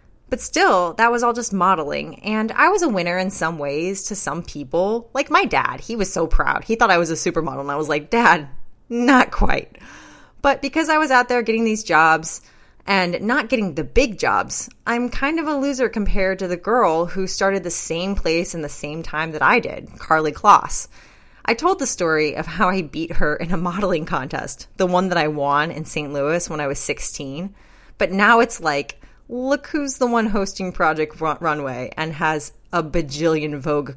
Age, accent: 20-39, American